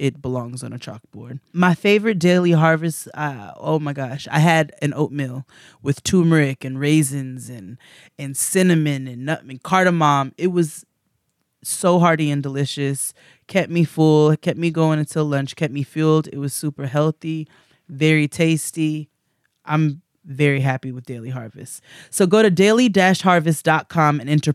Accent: American